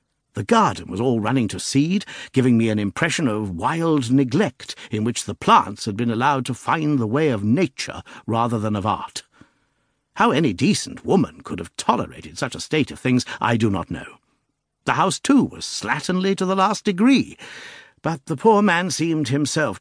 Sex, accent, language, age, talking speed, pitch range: male, British, English, 60-79, 190 wpm, 100-140 Hz